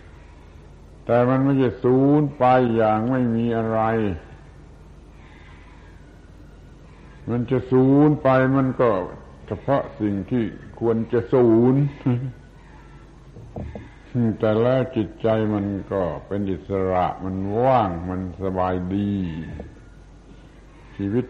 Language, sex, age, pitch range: Thai, male, 70-89, 90-125 Hz